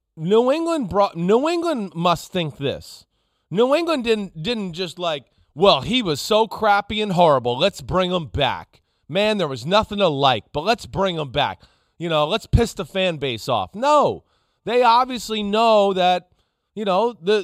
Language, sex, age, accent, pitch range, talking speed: English, male, 30-49, American, 155-225 Hz, 180 wpm